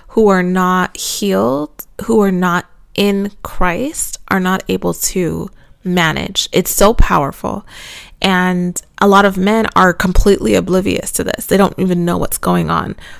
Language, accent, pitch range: English, American, 175-210 Hz